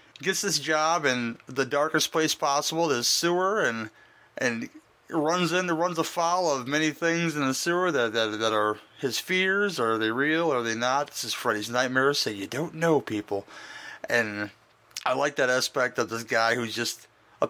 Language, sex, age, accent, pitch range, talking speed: English, male, 30-49, American, 115-145 Hz, 195 wpm